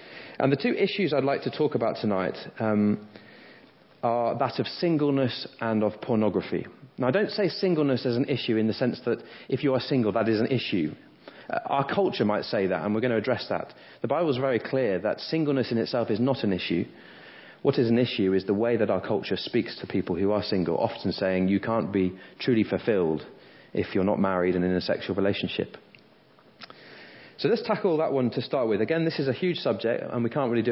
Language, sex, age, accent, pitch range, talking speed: English, male, 30-49, British, 95-125 Hz, 220 wpm